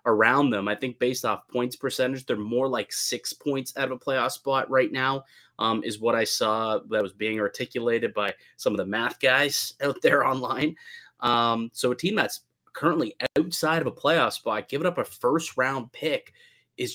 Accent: American